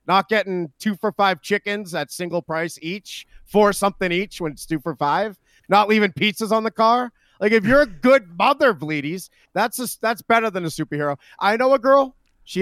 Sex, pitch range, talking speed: male, 155-210 Hz, 210 wpm